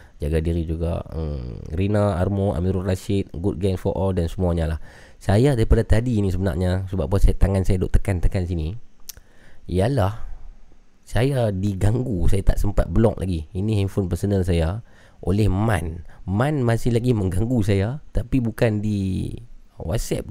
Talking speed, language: 150 wpm, Malay